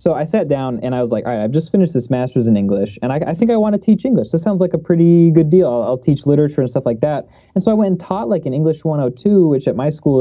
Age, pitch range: 20-39, 120-170 Hz